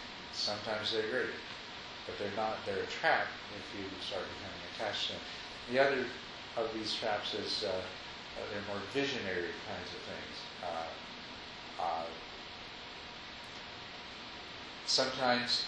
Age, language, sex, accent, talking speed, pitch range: 50-69, English, male, American, 125 wpm, 95-110 Hz